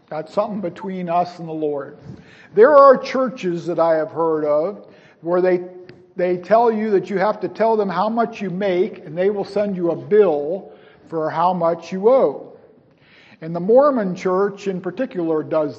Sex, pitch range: male, 175-220 Hz